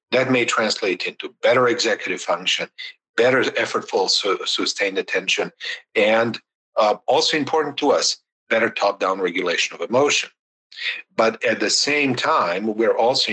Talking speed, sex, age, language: 130 wpm, male, 50-69, English